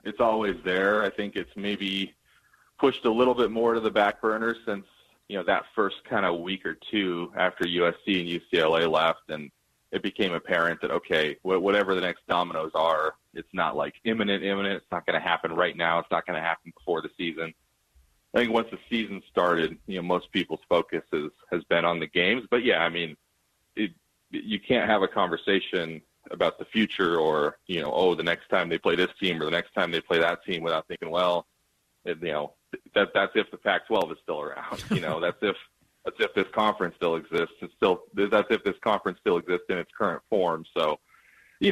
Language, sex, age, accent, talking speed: English, male, 30-49, American, 210 wpm